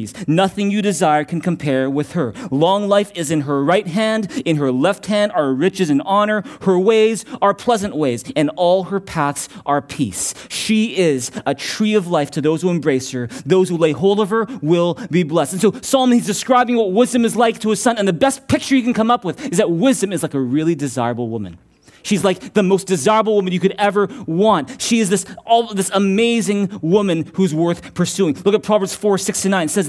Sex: male